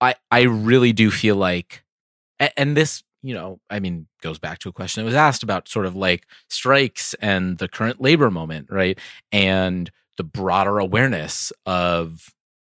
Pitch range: 90-125 Hz